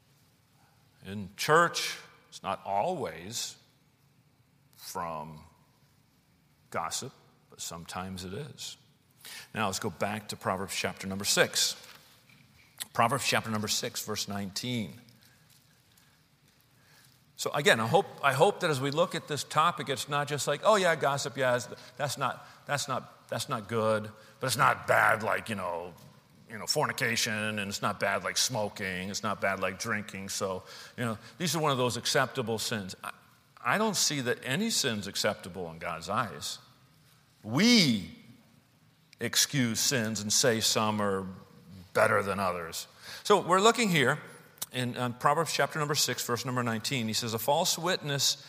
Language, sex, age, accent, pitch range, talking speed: English, male, 40-59, American, 110-140 Hz, 155 wpm